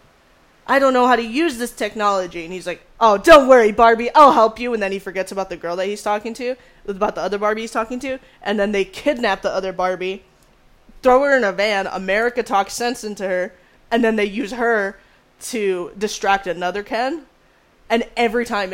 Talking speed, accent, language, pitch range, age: 210 wpm, American, English, 190-235 Hz, 20-39